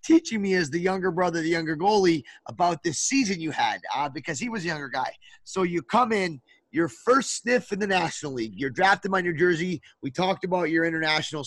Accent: American